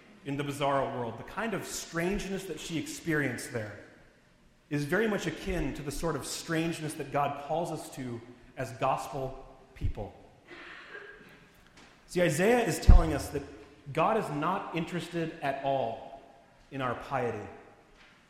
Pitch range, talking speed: 135-170 Hz, 145 wpm